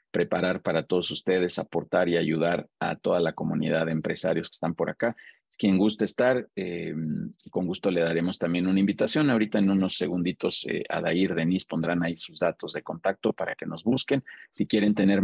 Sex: male